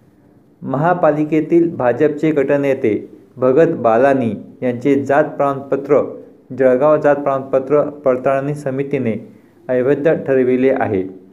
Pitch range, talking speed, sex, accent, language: 125-145 Hz, 85 wpm, male, native, Marathi